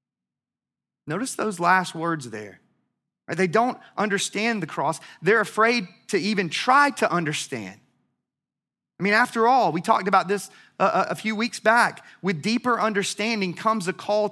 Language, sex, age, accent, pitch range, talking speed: English, male, 30-49, American, 165-205 Hz, 155 wpm